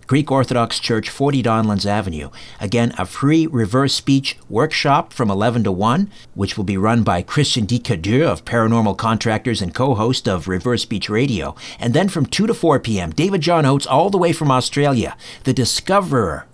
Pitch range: 110-145 Hz